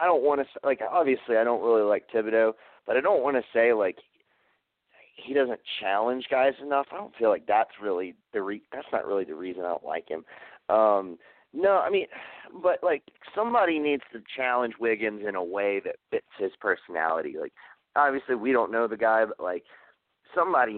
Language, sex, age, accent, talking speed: English, male, 30-49, American, 205 wpm